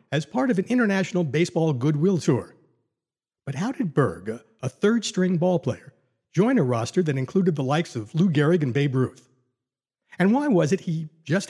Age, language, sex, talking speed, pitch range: 60-79, English, male, 175 wpm, 130-180 Hz